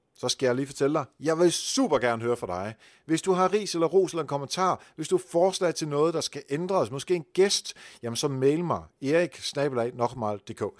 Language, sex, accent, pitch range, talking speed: Danish, male, native, 120-175 Hz, 215 wpm